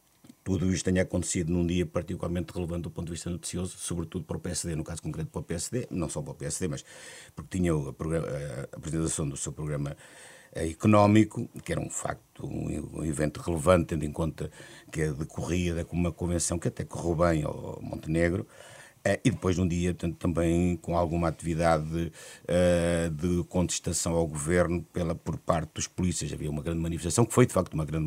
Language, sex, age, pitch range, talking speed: Portuguese, male, 50-69, 85-100 Hz, 190 wpm